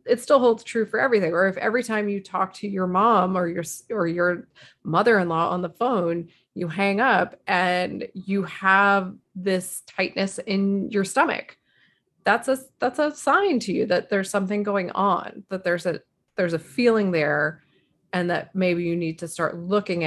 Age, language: 30-49, English